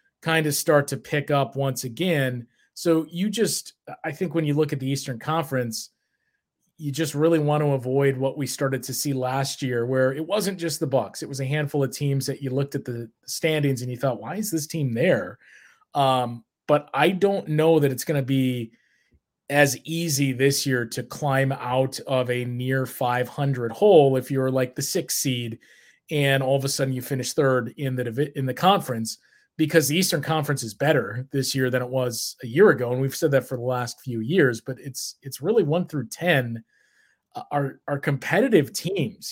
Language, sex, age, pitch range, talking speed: English, male, 30-49, 130-155 Hz, 205 wpm